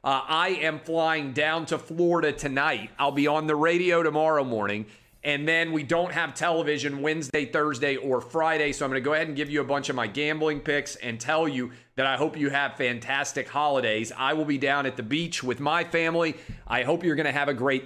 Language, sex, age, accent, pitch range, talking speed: English, male, 40-59, American, 125-155 Hz, 230 wpm